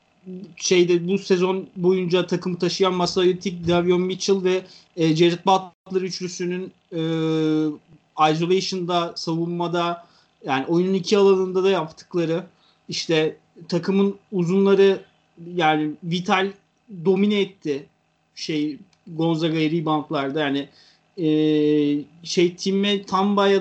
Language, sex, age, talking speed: Turkish, male, 30-49, 100 wpm